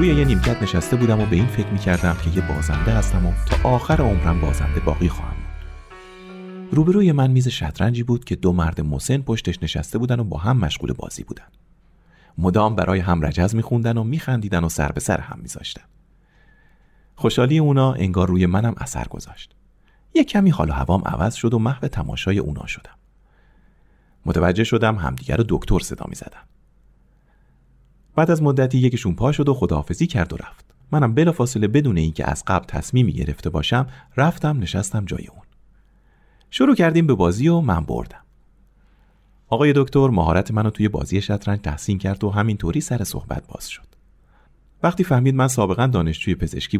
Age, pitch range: 40-59, 85-130 Hz